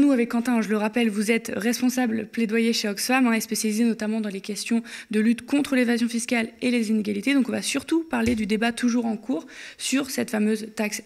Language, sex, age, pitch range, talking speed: French, female, 20-39, 210-255 Hz, 220 wpm